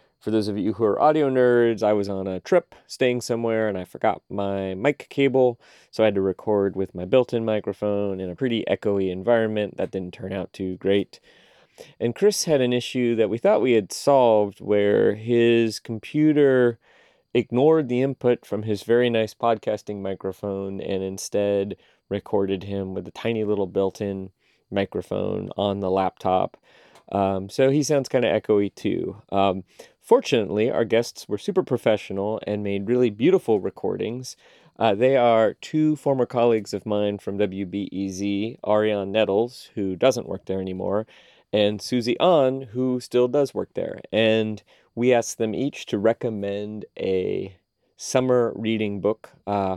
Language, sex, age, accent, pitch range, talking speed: English, male, 30-49, American, 100-125 Hz, 160 wpm